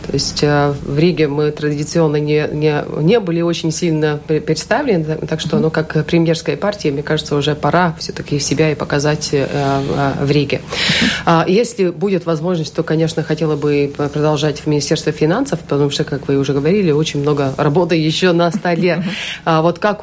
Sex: female